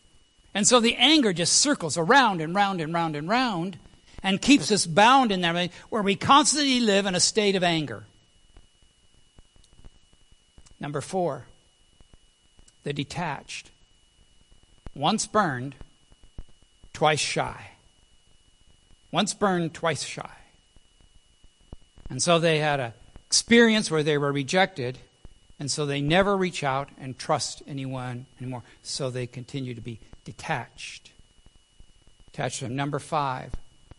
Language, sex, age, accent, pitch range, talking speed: English, male, 60-79, American, 120-180 Hz, 120 wpm